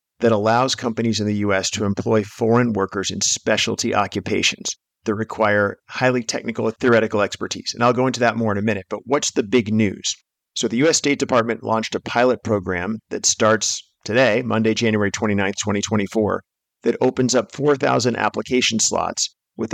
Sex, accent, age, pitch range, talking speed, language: male, American, 50-69, 105-120 Hz, 175 wpm, English